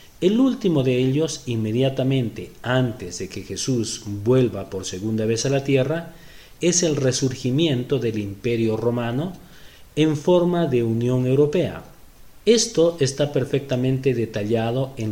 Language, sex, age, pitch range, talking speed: Spanish, male, 40-59, 120-160 Hz, 125 wpm